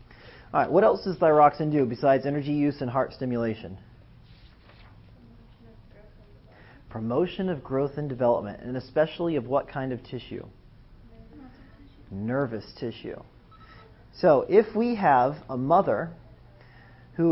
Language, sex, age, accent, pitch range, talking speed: English, male, 40-59, American, 115-140 Hz, 115 wpm